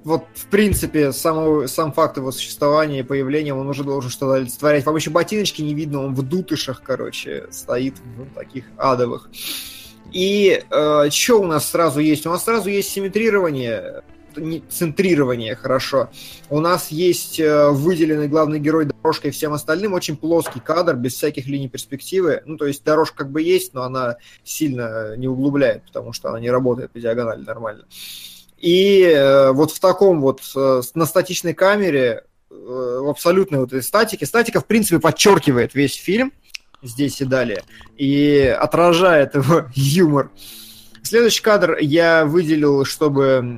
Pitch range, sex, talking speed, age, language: 130-165 Hz, male, 150 wpm, 20-39, Russian